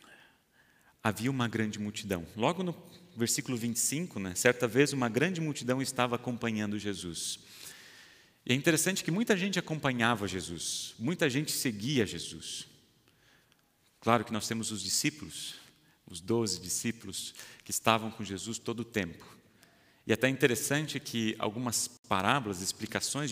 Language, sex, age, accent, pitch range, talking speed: Portuguese, male, 40-59, Brazilian, 105-135 Hz, 135 wpm